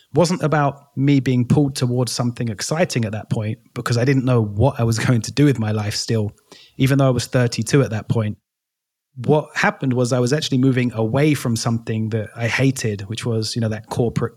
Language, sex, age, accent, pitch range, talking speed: English, male, 30-49, British, 115-135 Hz, 215 wpm